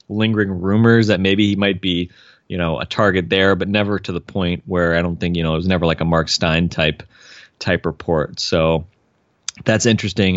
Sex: male